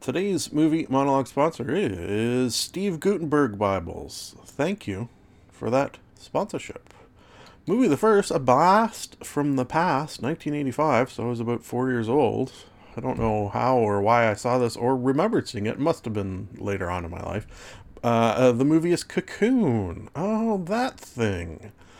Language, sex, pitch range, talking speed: English, male, 105-145 Hz, 165 wpm